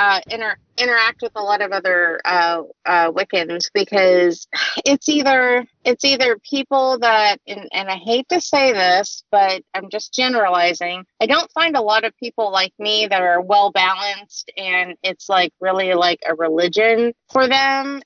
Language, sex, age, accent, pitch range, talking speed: English, female, 30-49, American, 195-245 Hz, 170 wpm